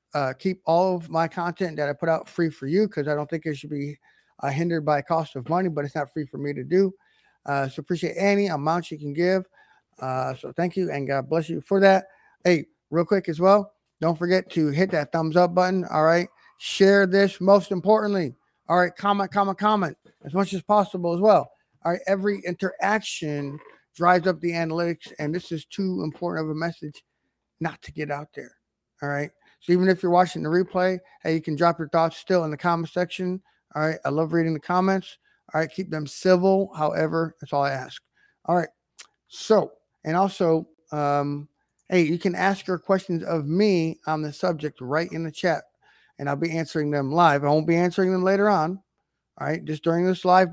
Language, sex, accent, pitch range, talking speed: English, male, American, 155-185 Hz, 215 wpm